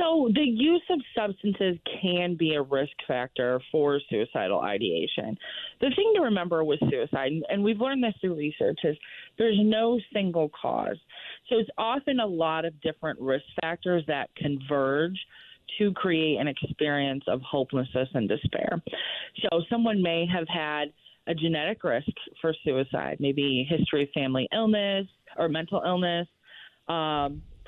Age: 30-49